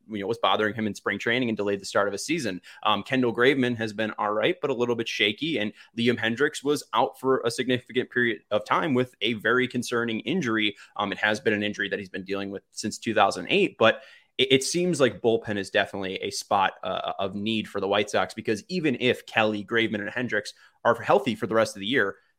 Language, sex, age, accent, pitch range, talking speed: English, male, 20-39, American, 105-125 Hz, 235 wpm